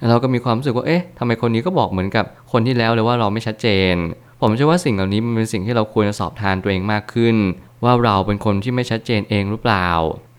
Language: Thai